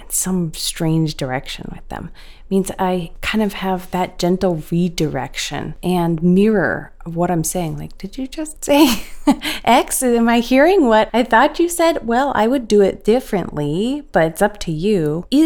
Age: 30-49